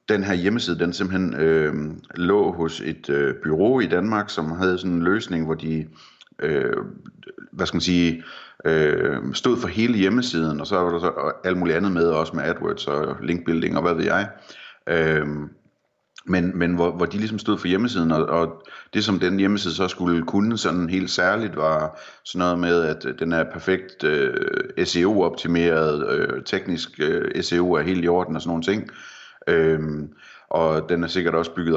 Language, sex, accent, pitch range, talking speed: Danish, male, native, 80-95 Hz, 170 wpm